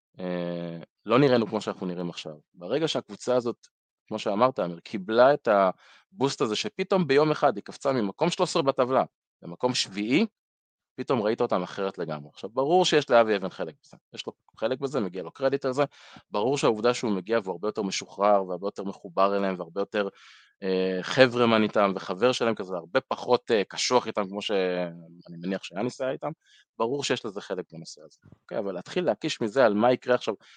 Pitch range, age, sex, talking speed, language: 95-130 Hz, 20-39, male, 180 wpm, Hebrew